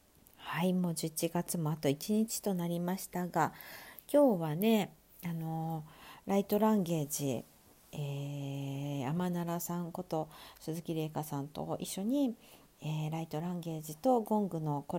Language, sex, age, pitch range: Japanese, female, 50-69, 150-195 Hz